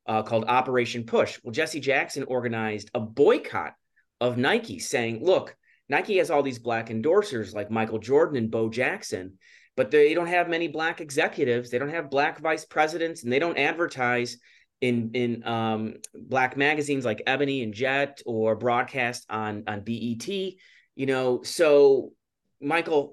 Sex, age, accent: male, 30-49, American